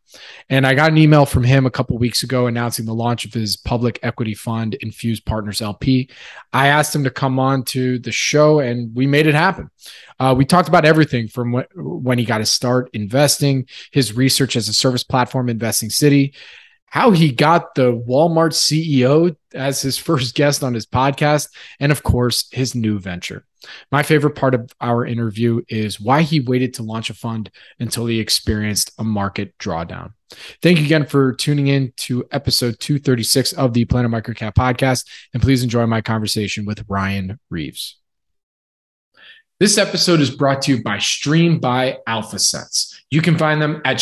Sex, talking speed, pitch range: male, 185 wpm, 120-150 Hz